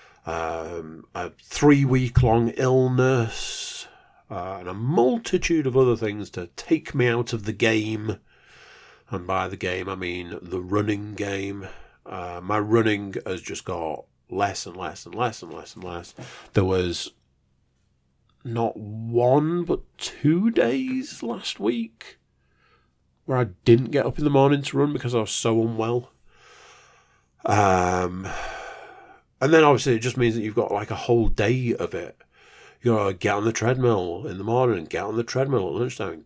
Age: 40-59